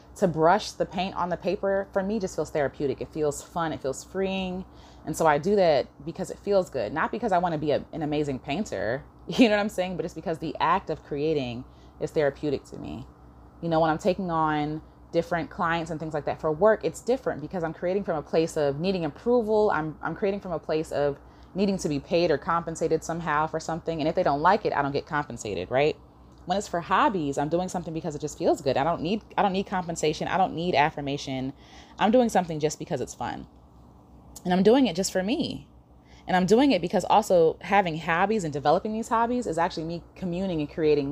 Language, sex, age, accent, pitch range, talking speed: English, female, 20-39, American, 145-195 Hz, 235 wpm